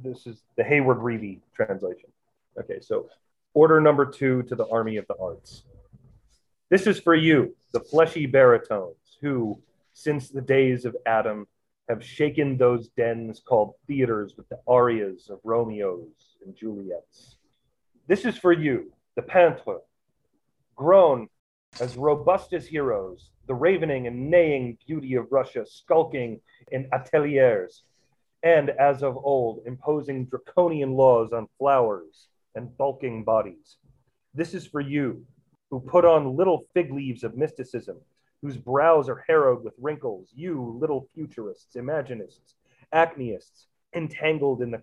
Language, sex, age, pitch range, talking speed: English, male, 30-49, 125-160 Hz, 135 wpm